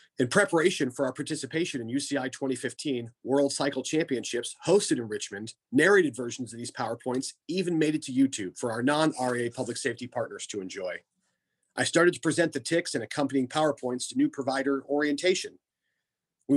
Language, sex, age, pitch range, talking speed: English, male, 40-59, 125-160 Hz, 165 wpm